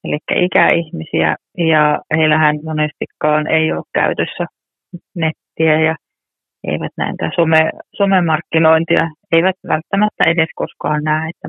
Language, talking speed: Finnish, 105 wpm